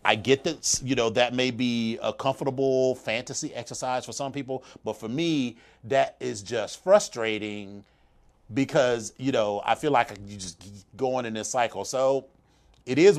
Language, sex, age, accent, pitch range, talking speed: English, male, 30-49, American, 100-130 Hz, 175 wpm